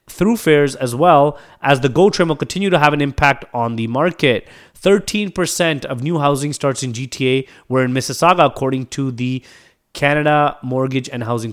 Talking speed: 175 wpm